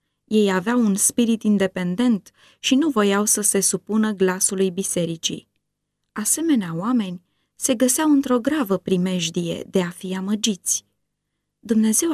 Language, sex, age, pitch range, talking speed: Romanian, female, 20-39, 195-255 Hz, 125 wpm